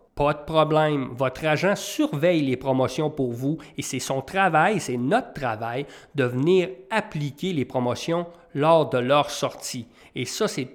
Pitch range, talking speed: 130-160 Hz, 160 wpm